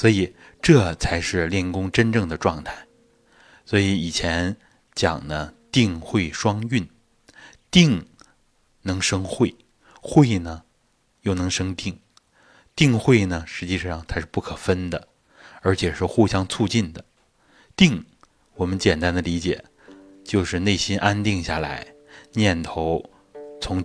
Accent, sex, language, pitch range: native, male, Chinese, 90-115 Hz